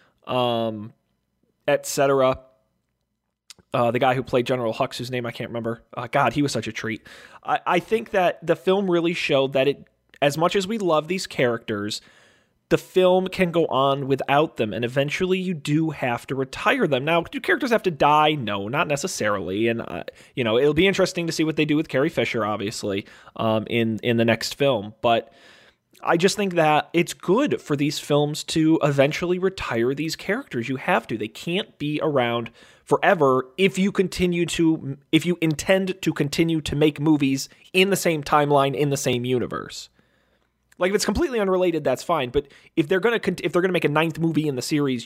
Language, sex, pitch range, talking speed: English, male, 130-170 Hz, 200 wpm